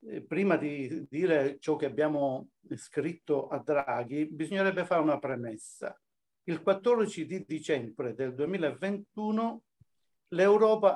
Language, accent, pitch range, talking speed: Italian, native, 140-195 Hz, 110 wpm